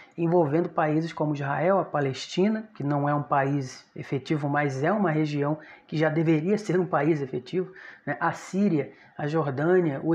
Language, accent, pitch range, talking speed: Portuguese, Brazilian, 155-205 Hz, 170 wpm